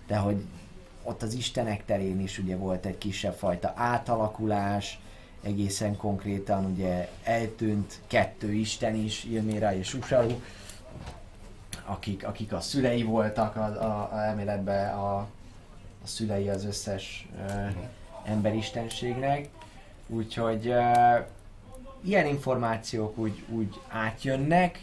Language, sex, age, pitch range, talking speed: Hungarian, male, 20-39, 100-115 Hz, 110 wpm